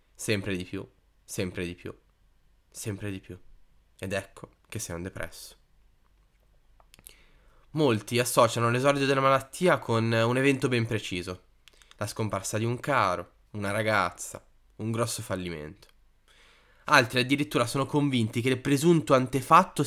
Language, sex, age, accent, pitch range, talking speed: Italian, male, 20-39, native, 100-150 Hz, 130 wpm